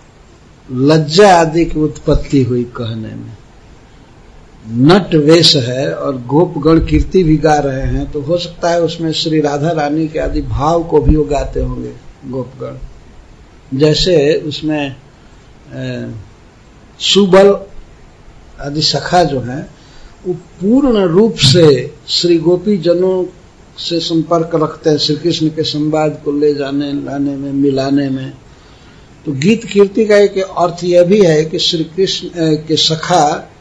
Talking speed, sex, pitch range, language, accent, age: 130 wpm, male, 140-170 Hz, English, Indian, 60-79